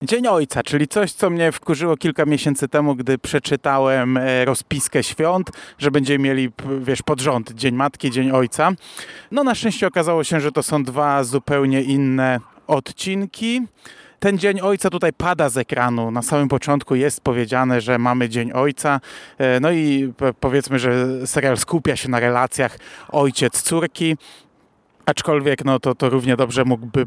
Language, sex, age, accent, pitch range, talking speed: Polish, male, 30-49, native, 125-150 Hz, 150 wpm